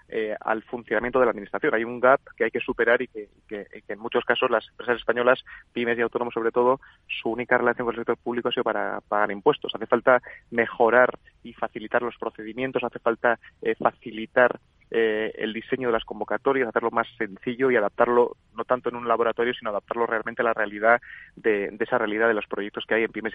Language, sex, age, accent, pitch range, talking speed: Spanish, male, 30-49, Spanish, 110-125 Hz, 215 wpm